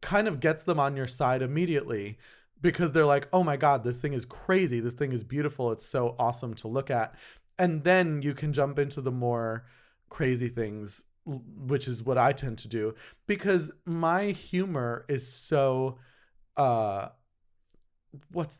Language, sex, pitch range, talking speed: English, male, 125-165 Hz, 170 wpm